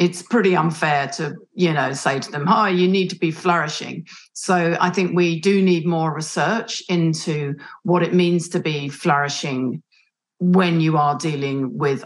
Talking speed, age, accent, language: 175 wpm, 40-59, British, English